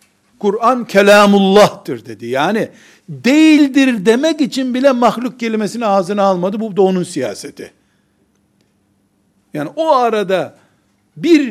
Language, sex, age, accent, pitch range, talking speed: Turkish, male, 60-79, native, 155-215 Hz, 105 wpm